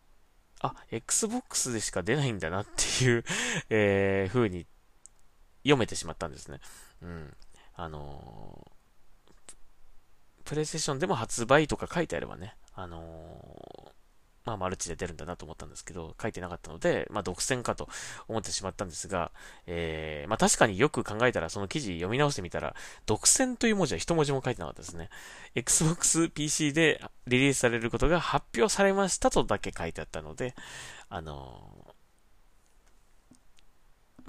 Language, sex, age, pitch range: Japanese, male, 20-39, 85-135 Hz